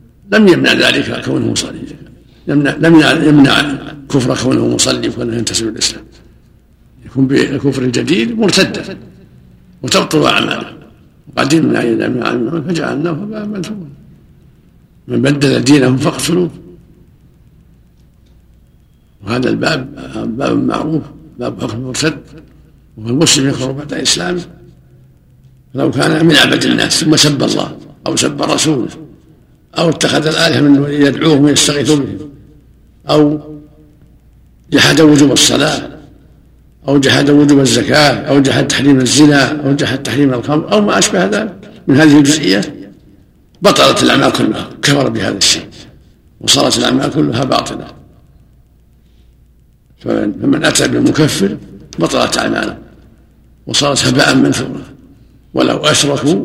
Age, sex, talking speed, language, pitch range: 60-79, male, 115 wpm, Arabic, 130-155 Hz